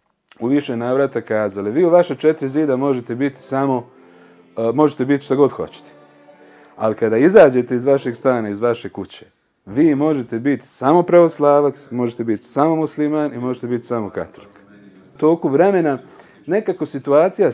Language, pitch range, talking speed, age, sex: Croatian, 115-155 Hz, 150 wpm, 40-59, male